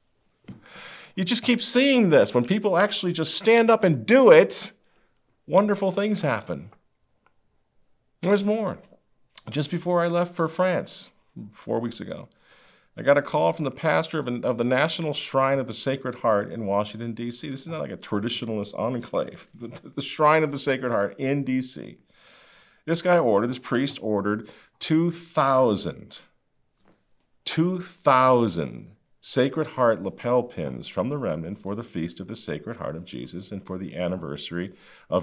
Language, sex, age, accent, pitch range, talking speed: English, male, 50-69, American, 120-185 Hz, 155 wpm